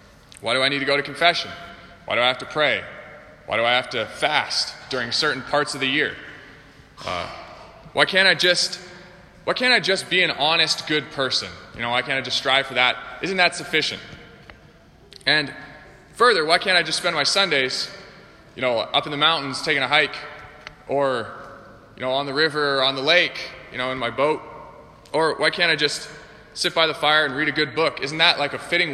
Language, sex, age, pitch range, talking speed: English, male, 20-39, 130-165 Hz, 215 wpm